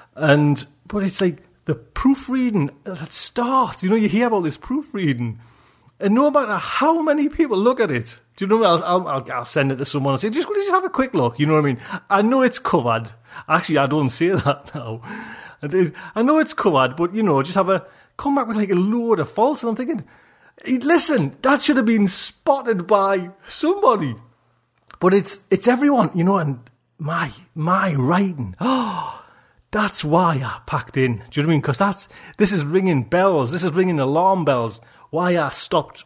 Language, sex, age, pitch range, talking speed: English, male, 30-49, 140-215 Hz, 205 wpm